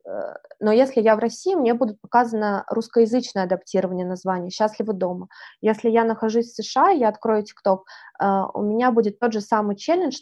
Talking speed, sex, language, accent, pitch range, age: 165 wpm, female, Russian, native, 195-235 Hz, 20-39